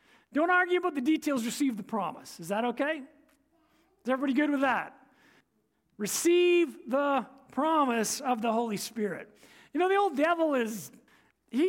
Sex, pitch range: male, 245-340 Hz